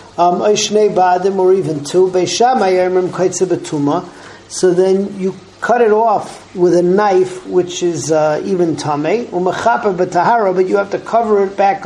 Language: English